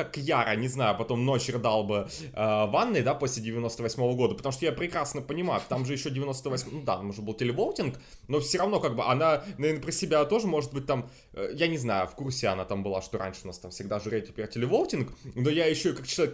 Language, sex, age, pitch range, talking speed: Russian, male, 20-39, 125-165 Hz, 235 wpm